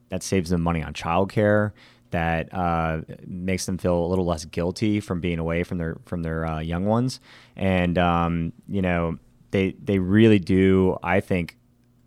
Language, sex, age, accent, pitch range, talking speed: English, male, 20-39, American, 85-95 Hz, 175 wpm